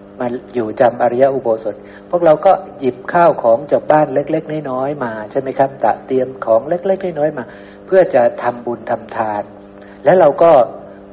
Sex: male